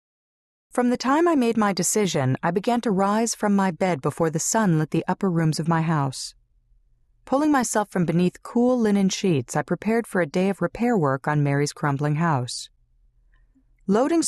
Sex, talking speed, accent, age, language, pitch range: female, 185 wpm, American, 40-59, English, 135-200 Hz